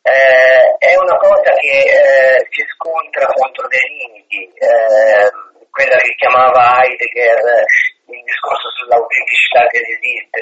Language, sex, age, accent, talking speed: Italian, male, 40-59, native, 120 wpm